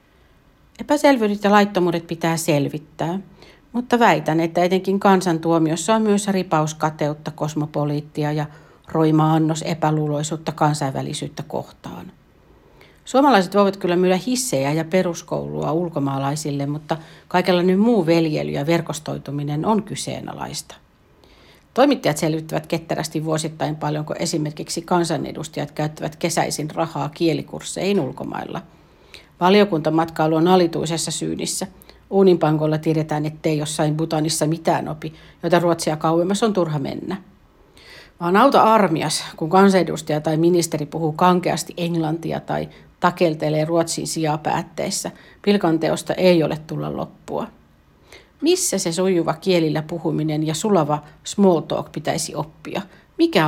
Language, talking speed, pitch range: Finnish, 110 wpm, 155-180 Hz